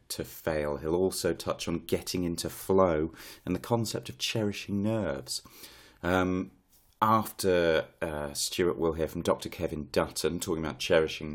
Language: English